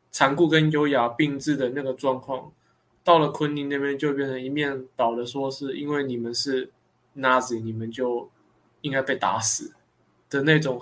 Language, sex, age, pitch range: Chinese, male, 20-39, 125-150 Hz